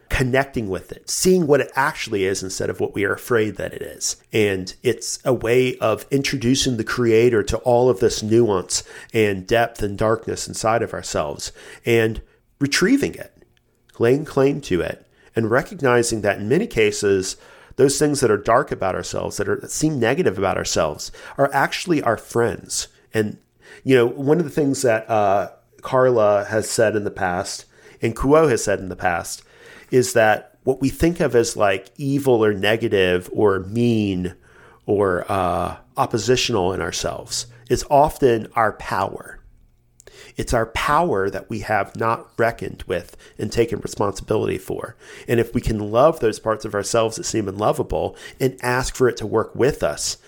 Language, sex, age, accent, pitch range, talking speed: English, male, 40-59, American, 105-130 Hz, 175 wpm